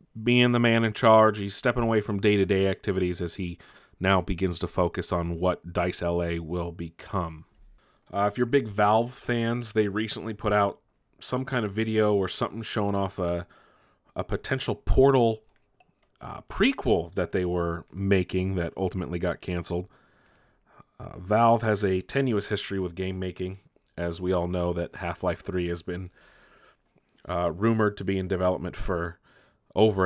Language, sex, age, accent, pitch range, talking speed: English, male, 30-49, American, 90-105 Hz, 160 wpm